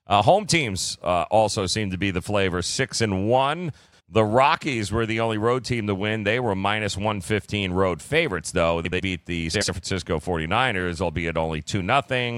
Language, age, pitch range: English, 40-59, 90-110 Hz